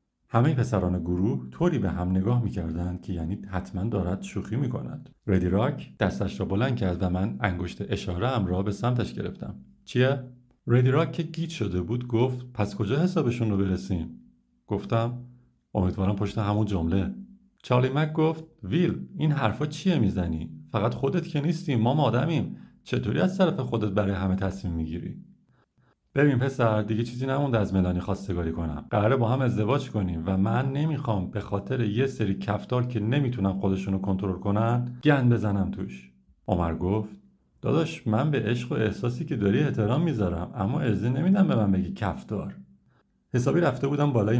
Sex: male